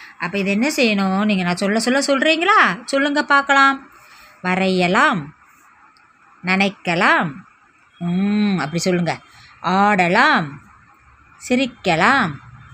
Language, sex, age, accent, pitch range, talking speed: Tamil, female, 20-39, native, 175-255 Hz, 85 wpm